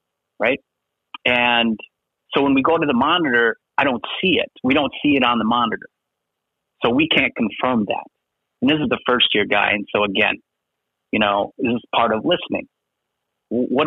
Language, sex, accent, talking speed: English, male, American, 185 wpm